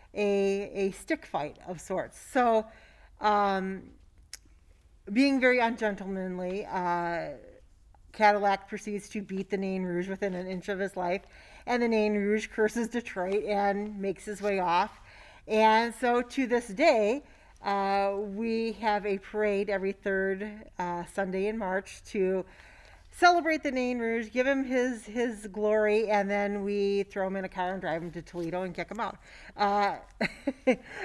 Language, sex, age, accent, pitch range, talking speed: English, female, 40-59, American, 190-230 Hz, 155 wpm